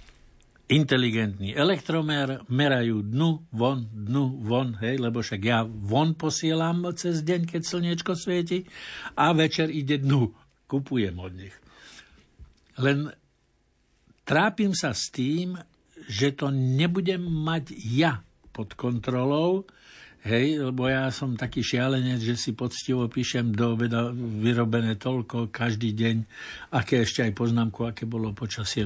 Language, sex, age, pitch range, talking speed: Slovak, male, 60-79, 115-155 Hz, 125 wpm